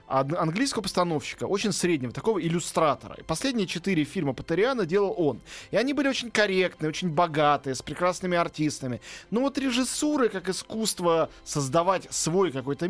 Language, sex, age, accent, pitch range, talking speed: Russian, male, 20-39, native, 135-185 Hz, 145 wpm